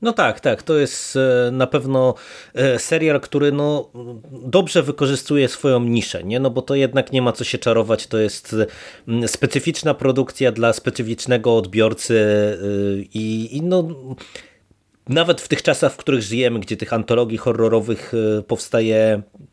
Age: 30-49